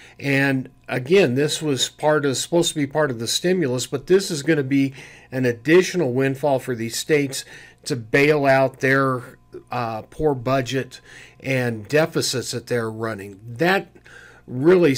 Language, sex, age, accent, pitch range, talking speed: English, male, 50-69, American, 125-160 Hz, 155 wpm